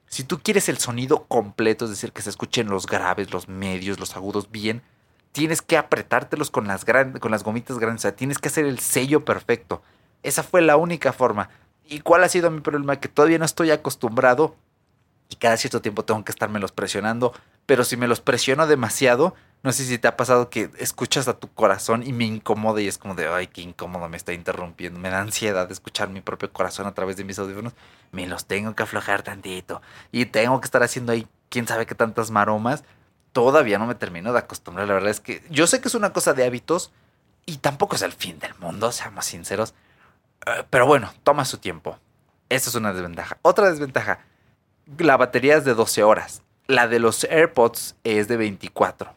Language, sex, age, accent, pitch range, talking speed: Spanish, male, 30-49, Mexican, 100-135 Hz, 210 wpm